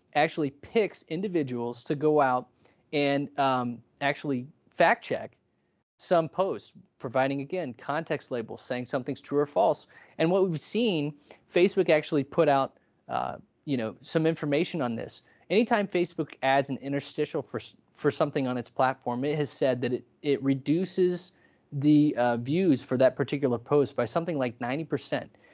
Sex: male